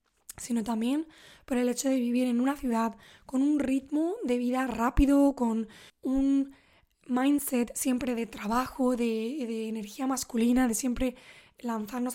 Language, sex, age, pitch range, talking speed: English, female, 20-39, 235-270 Hz, 145 wpm